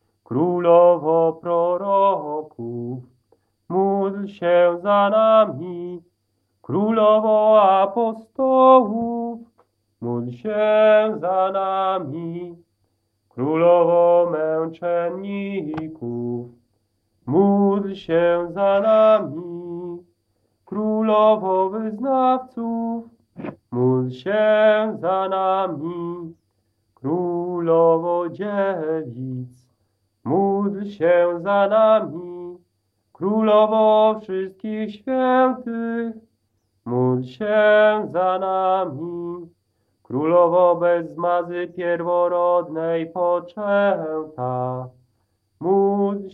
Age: 40-59